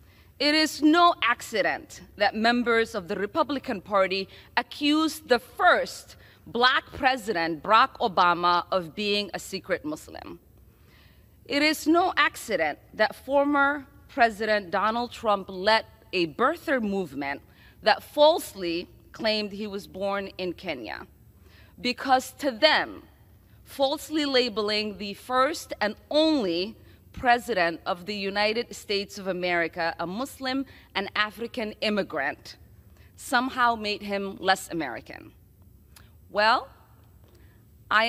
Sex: female